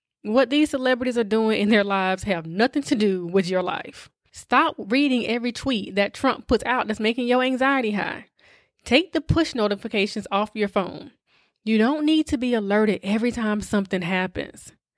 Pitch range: 195-265 Hz